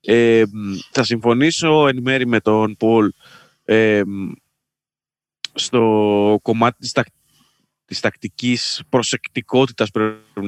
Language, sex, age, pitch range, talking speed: Greek, male, 20-39, 110-150 Hz, 90 wpm